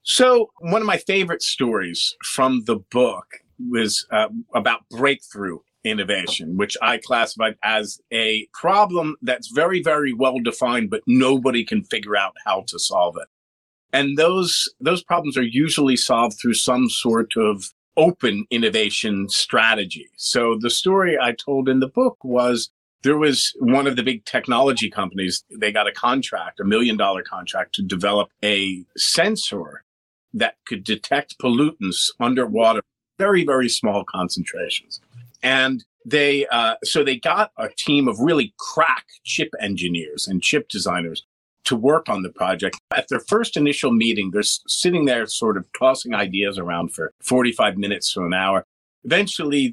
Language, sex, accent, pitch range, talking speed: English, male, American, 105-165 Hz, 155 wpm